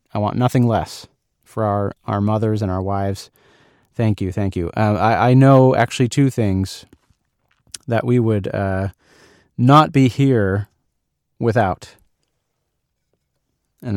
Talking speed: 135 wpm